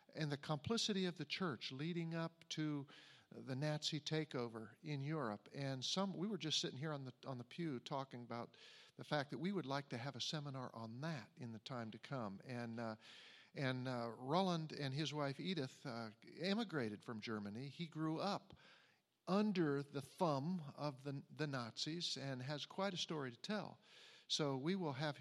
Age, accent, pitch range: 50-69, American, 130-170 Hz